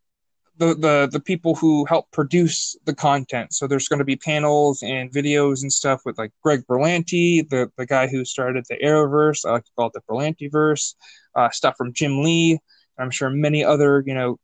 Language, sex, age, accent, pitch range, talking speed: English, male, 20-39, American, 130-155 Hz, 200 wpm